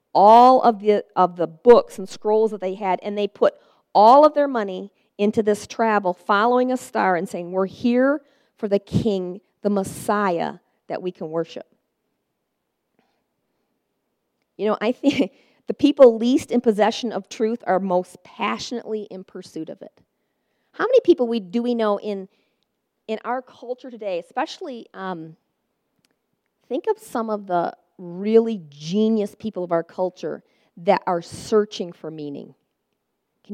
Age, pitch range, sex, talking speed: 40-59, 185-240 Hz, female, 155 wpm